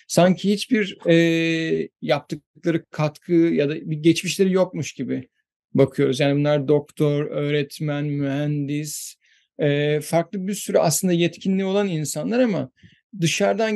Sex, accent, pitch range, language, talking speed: male, native, 155-195 Hz, Turkish, 120 wpm